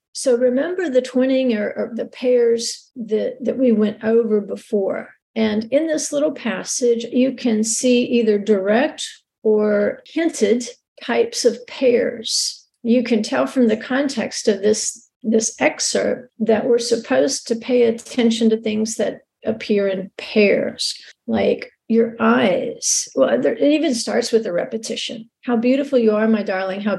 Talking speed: 150 wpm